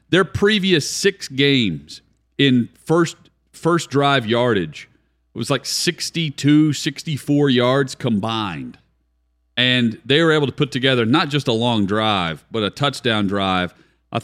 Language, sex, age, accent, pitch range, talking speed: English, male, 40-59, American, 105-135 Hz, 135 wpm